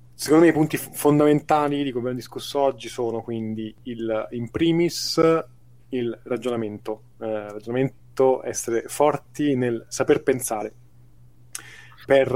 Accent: native